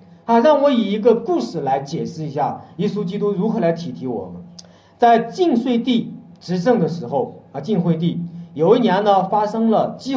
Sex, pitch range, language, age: male, 170-245 Hz, Chinese, 40-59